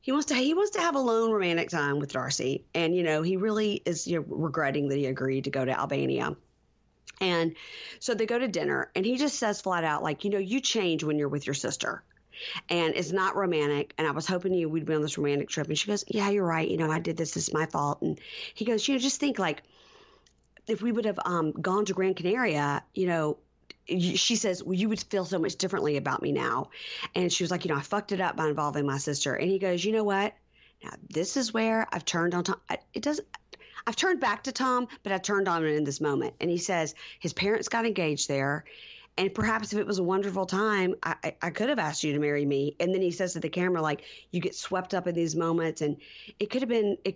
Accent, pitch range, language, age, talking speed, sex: American, 155-215 Hz, English, 40-59, 260 wpm, female